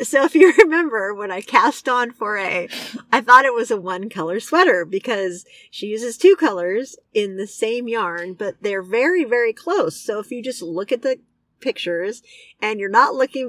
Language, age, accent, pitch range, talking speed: English, 40-59, American, 200-295 Hz, 190 wpm